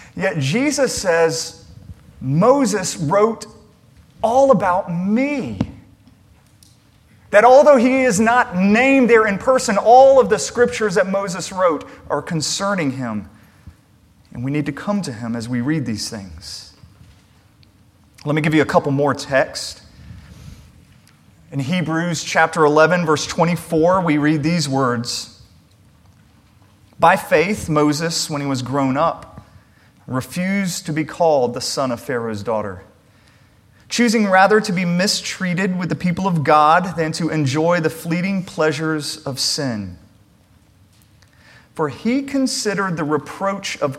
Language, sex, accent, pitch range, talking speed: English, male, American, 115-190 Hz, 135 wpm